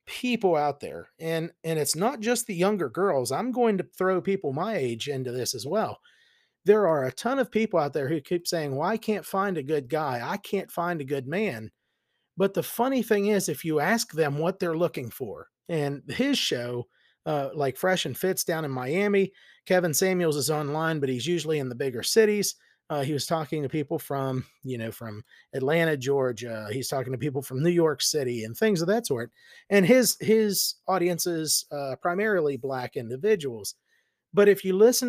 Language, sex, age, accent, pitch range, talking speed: English, male, 40-59, American, 145-200 Hz, 200 wpm